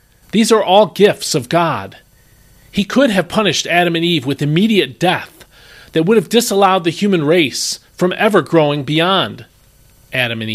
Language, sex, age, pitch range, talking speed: English, male, 40-59, 125-180 Hz, 165 wpm